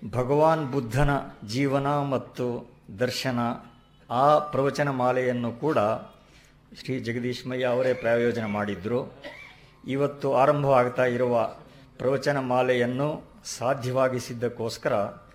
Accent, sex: native, male